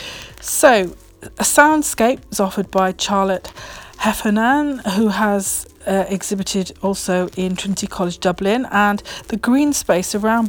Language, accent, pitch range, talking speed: English, British, 185-215 Hz, 125 wpm